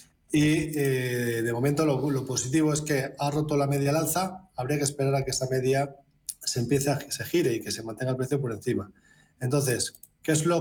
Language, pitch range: Spanish, 125-150 Hz